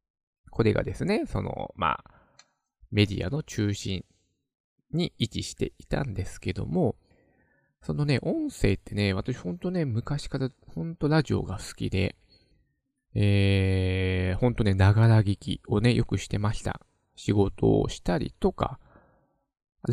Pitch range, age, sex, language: 100-140 Hz, 20-39, male, Japanese